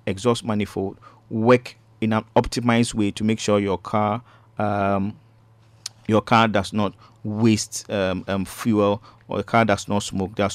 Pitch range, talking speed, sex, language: 100-115 Hz, 165 wpm, male, English